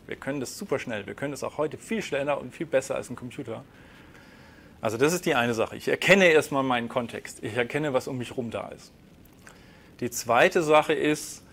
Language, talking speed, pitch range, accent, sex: German, 215 wpm, 120-150 Hz, German, male